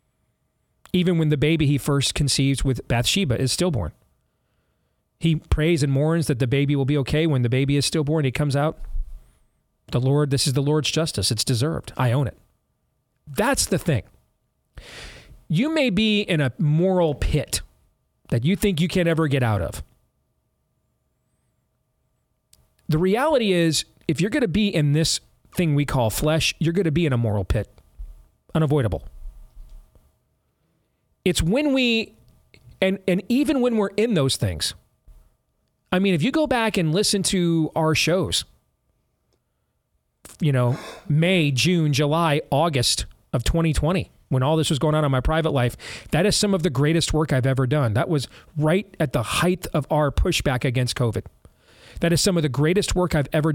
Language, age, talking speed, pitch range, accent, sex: English, 40-59, 170 wpm, 130-170 Hz, American, male